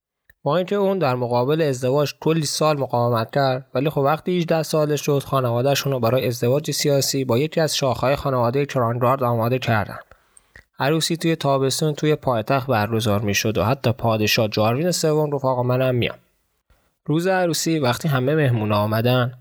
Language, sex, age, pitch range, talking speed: Persian, male, 20-39, 120-150 Hz, 155 wpm